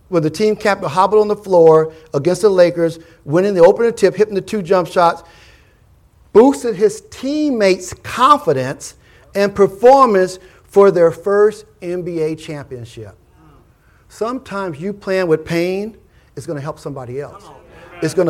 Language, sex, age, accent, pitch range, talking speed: English, male, 50-69, American, 155-205 Hz, 150 wpm